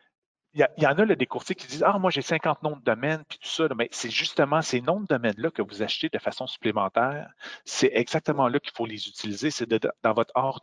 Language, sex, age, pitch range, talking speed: French, male, 40-59, 115-150 Hz, 290 wpm